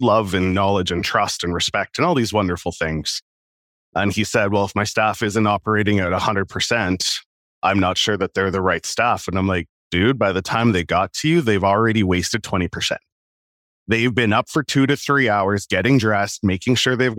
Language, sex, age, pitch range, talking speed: English, male, 30-49, 95-120 Hz, 205 wpm